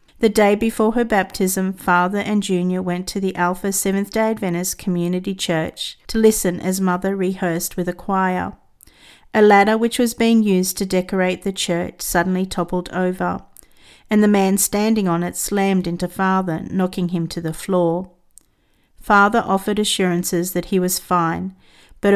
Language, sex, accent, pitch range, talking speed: English, female, Australian, 180-200 Hz, 160 wpm